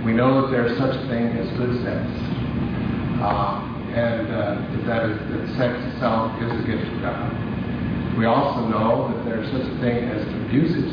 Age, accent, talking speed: 50-69, American, 190 wpm